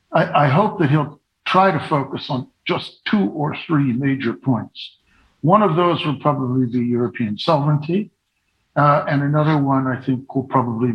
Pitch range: 125-155 Hz